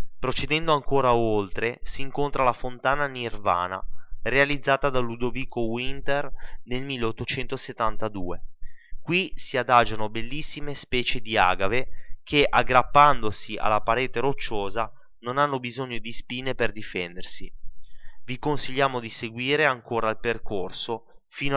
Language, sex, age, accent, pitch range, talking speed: Italian, male, 20-39, native, 110-130 Hz, 115 wpm